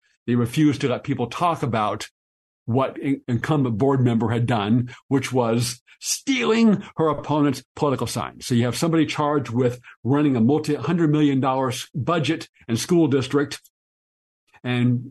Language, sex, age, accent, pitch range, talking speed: English, male, 50-69, American, 115-140 Hz, 145 wpm